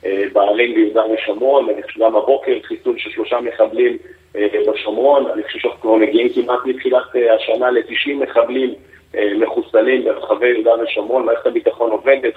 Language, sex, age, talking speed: Hebrew, male, 50-69, 135 wpm